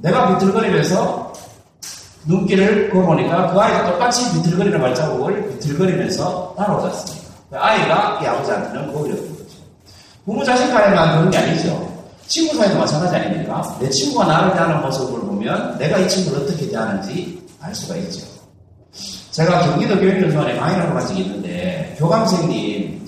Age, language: 40-59, Korean